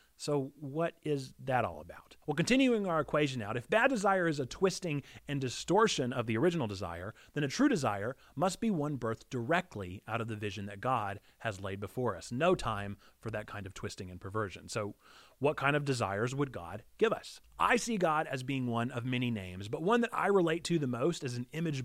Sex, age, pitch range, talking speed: male, 30-49, 125-175 Hz, 220 wpm